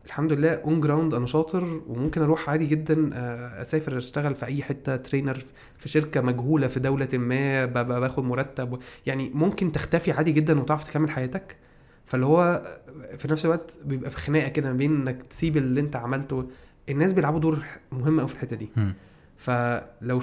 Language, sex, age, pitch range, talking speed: Arabic, male, 20-39, 125-160 Hz, 165 wpm